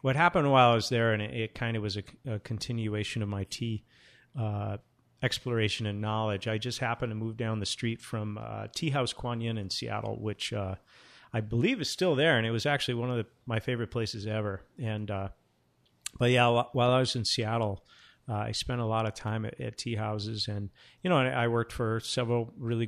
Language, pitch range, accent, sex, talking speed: English, 105-125 Hz, American, male, 225 wpm